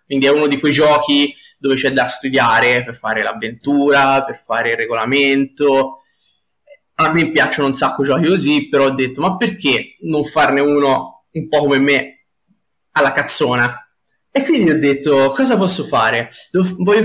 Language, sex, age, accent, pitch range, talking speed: Italian, male, 20-39, native, 135-190 Hz, 165 wpm